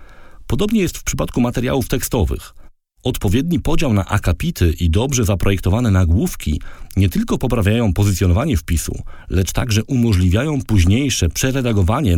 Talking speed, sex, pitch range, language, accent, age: 120 wpm, male, 90-120 Hz, Polish, native, 40-59